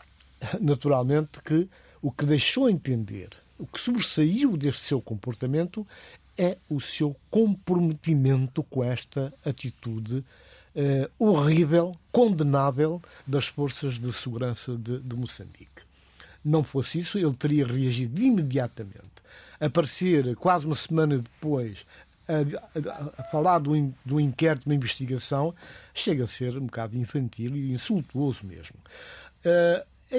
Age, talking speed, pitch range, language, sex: 60-79, 120 wpm, 125-170 Hz, Portuguese, male